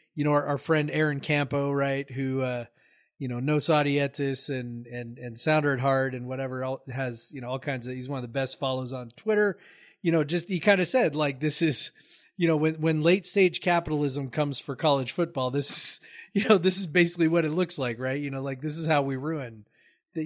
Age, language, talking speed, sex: 30-49, English, 230 wpm, male